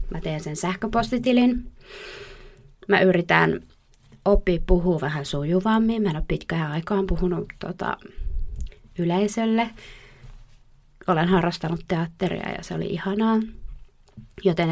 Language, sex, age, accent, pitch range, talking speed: Finnish, female, 20-39, native, 155-200 Hz, 105 wpm